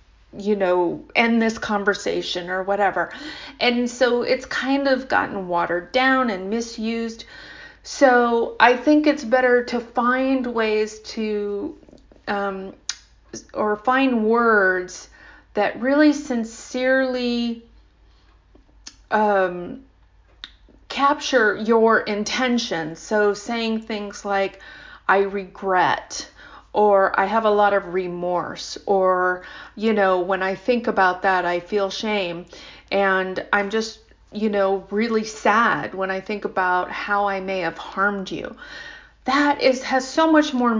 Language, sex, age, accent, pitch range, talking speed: English, female, 30-49, American, 195-245 Hz, 125 wpm